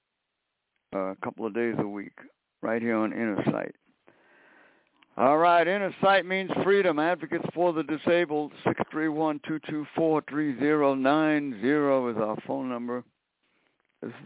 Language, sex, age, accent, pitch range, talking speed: English, male, 60-79, American, 110-155 Hz, 110 wpm